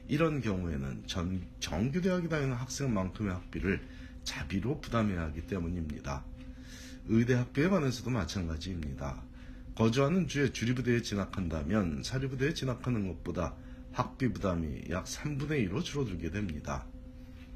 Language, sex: Korean, male